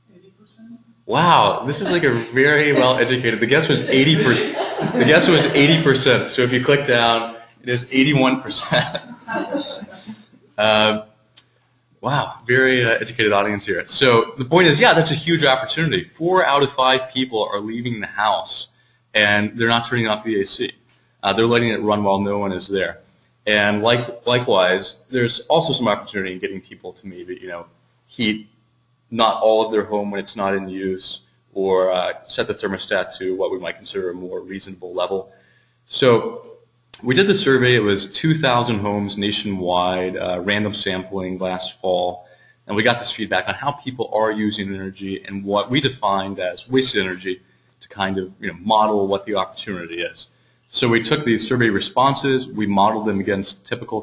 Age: 30-49